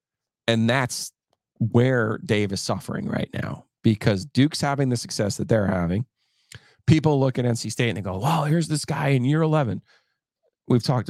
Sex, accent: male, American